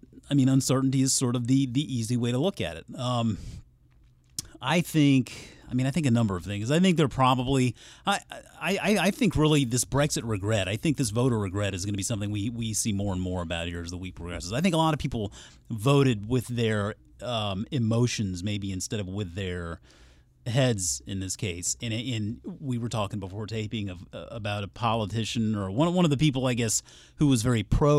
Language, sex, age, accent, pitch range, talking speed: English, male, 30-49, American, 105-145 Hz, 220 wpm